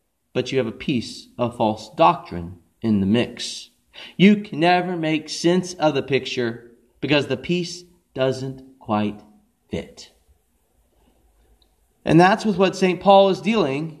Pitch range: 120-205 Hz